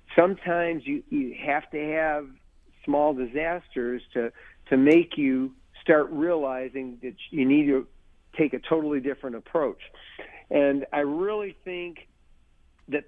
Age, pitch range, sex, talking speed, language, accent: 50-69, 125-160 Hz, male, 130 wpm, English, American